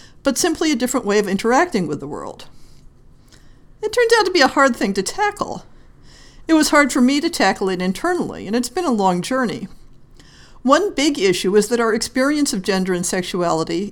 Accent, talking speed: American, 200 wpm